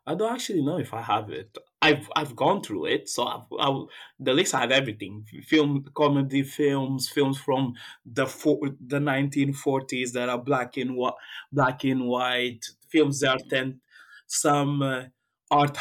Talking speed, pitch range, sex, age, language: 175 wpm, 125-140 Hz, male, 20-39, English